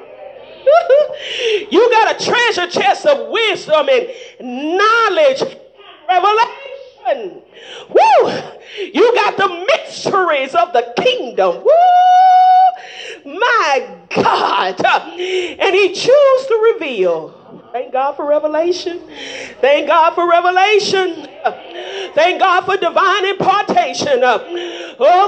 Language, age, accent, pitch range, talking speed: English, 40-59, American, 330-460 Hz, 95 wpm